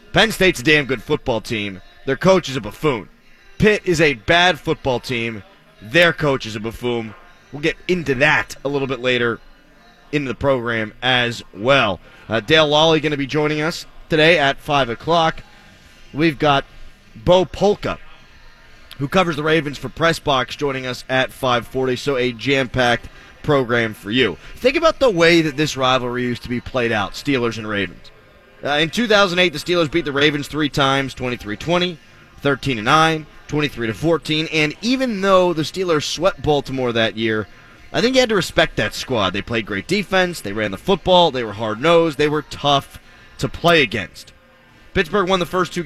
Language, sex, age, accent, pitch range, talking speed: English, male, 30-49, American, 125-165 Hz, 180 wpm